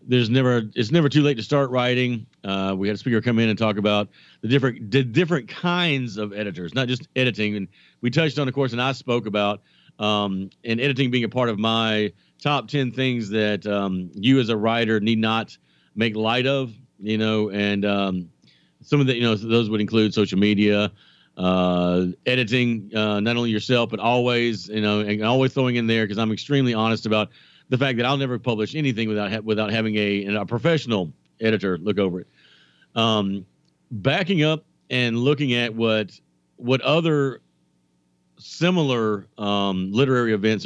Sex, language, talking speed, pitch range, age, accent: male, English, 185 wpm, 105-125 Hz, 50-69, American